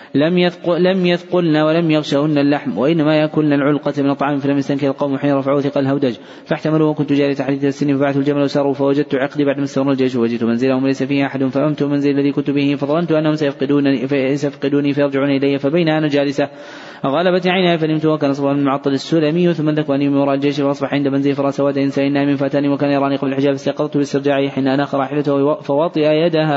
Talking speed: 185 wpm